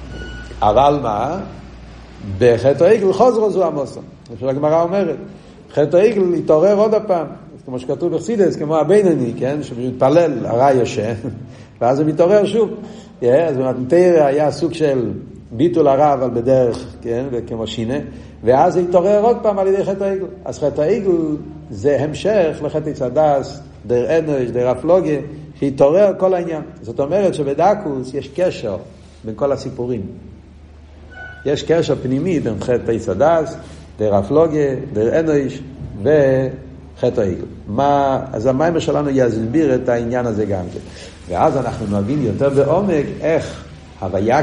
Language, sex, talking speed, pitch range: Hebrew, male, 140 wpm, 120-160 Hz